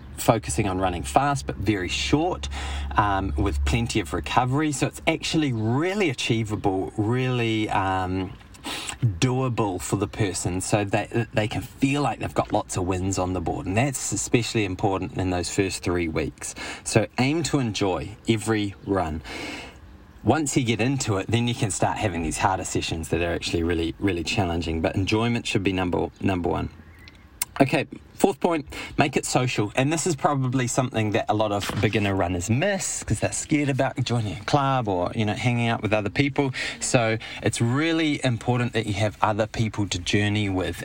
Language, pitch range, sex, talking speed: English, 95-125 Hz, male, 180 wpm